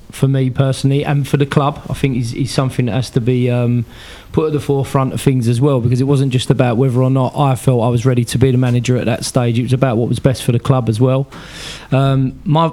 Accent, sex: British, male